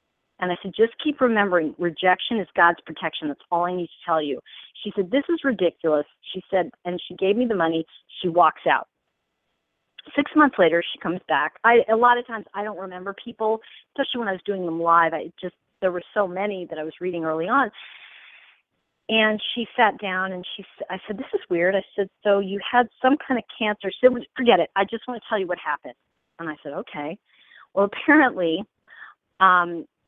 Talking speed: 210 wpm